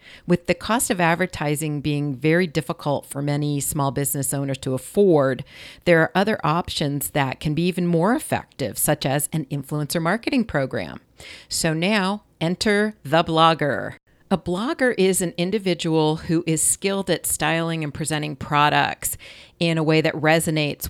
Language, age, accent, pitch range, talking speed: English, 40-59, American, 145-170 Hz, 155 wpm